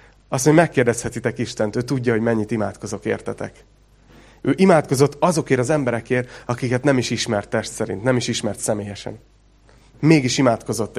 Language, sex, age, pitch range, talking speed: Hungarian, male, 30-49, 115-150 Hz, 155 wpm